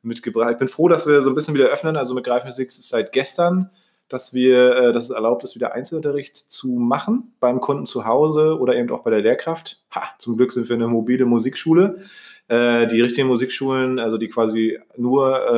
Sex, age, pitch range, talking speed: male, 30-49, 110-135 Hz, 195 wpm